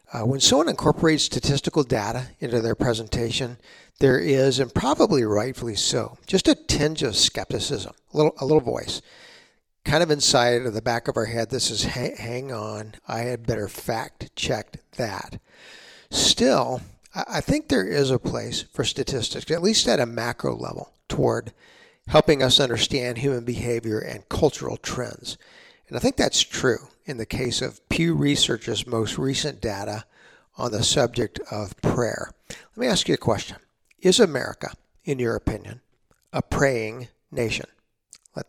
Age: 50-69